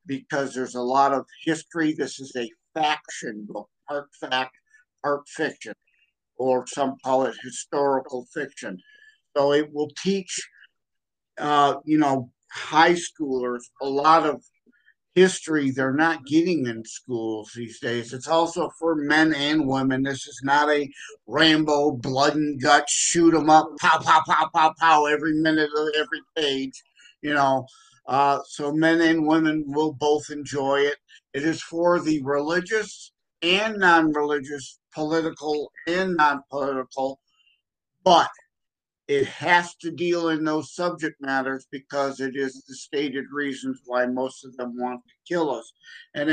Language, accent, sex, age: English, American, male, 50-69